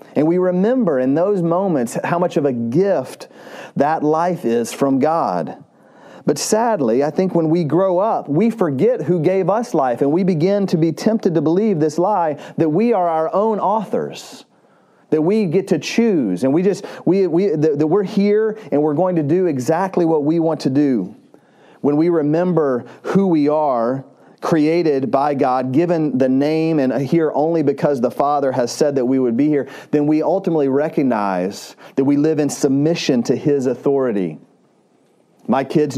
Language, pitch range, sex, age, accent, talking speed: English, 140-180 Hz, male, 40-59, American, 180 wpm